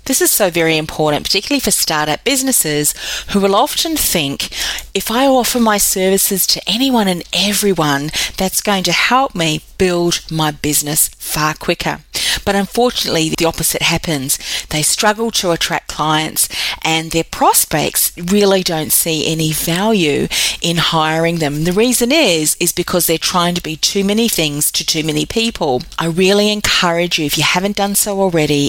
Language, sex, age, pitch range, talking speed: English, female, 30-49, 155-205 Hz, 165 wpm